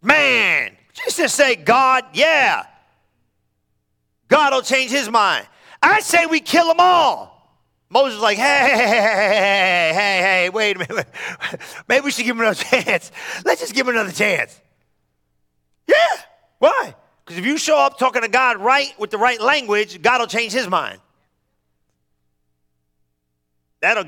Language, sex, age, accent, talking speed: English, male, 40-59, American, 155 wpm